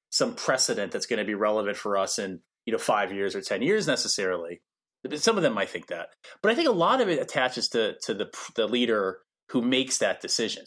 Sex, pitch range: male, 100-150 Hz